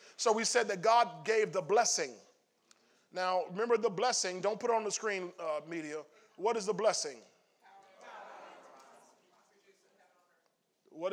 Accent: American